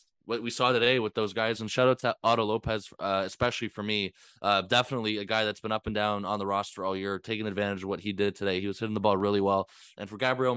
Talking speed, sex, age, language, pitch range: 275 wpm, male, 20-39, English, 105-120 Hz